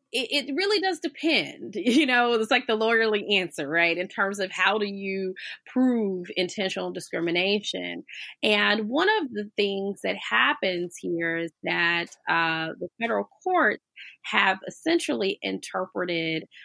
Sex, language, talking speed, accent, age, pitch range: female, English, 135 wpm, American, 30-49, 170-225 Hz